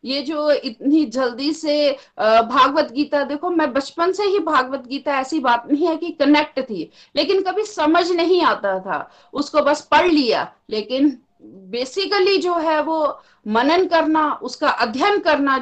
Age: 50-69